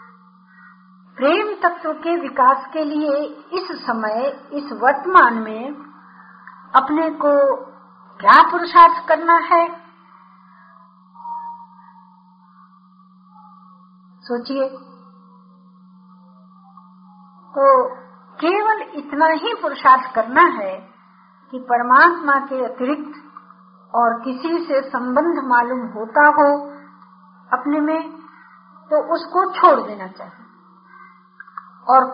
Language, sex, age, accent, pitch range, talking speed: Hindi, female, 50-69, native, 235-320 Hz, 80 wpm